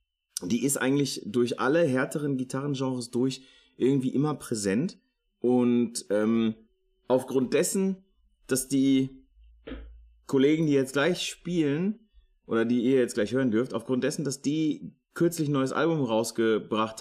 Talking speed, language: 135 wpm, German